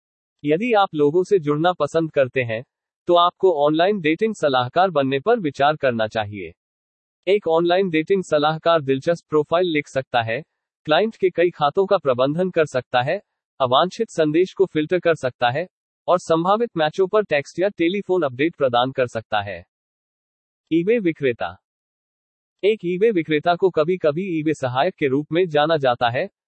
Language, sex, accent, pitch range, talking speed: English, male, Indian, 140-185 Hz, 125 wpm